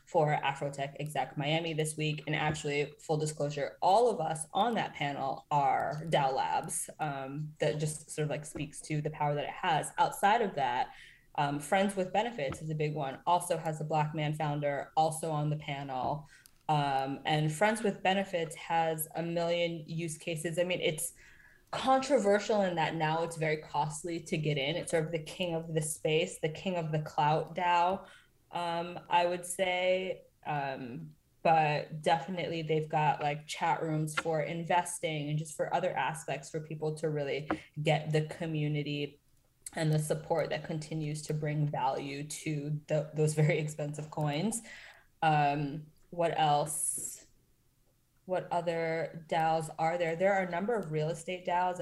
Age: 20-39